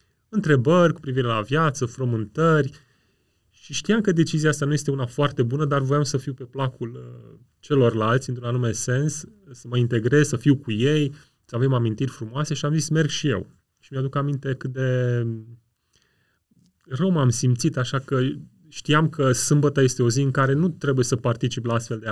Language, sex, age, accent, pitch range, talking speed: Romanian, male, 30-49, native, 125-150 Hz, 185 wpm